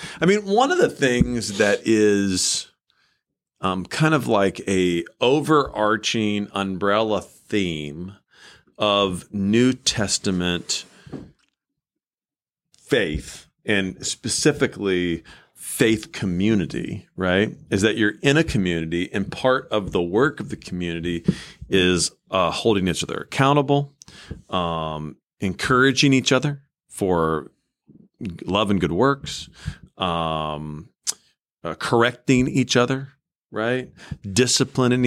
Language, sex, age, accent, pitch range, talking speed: English, male, 40-59, American, 95-130 Hz, 105 wpm